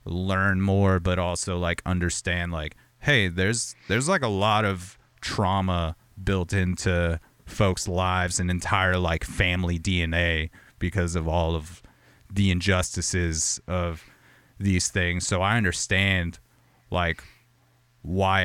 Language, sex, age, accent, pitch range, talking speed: English, male, 30-49, American, 85-105 Hz, 125 wpm